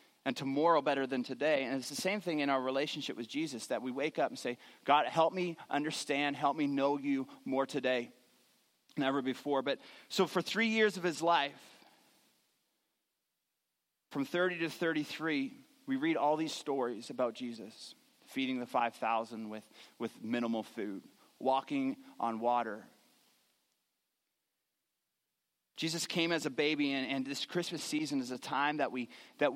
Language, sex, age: English, male, 30-49